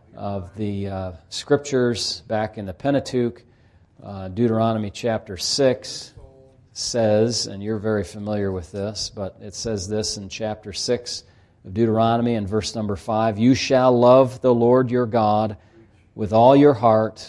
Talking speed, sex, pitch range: 150 wpm, male, 100-120 Hz